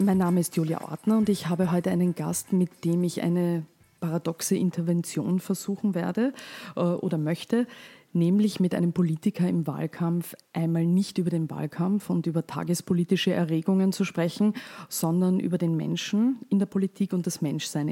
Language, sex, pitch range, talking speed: German, female, 165-190 Hz, 165 wpm